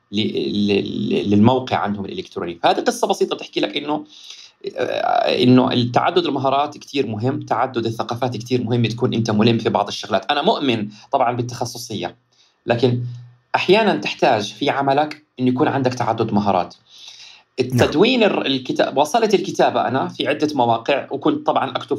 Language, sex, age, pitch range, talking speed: Arabic, male, 30-49, 115-140 Hz, 135 wpm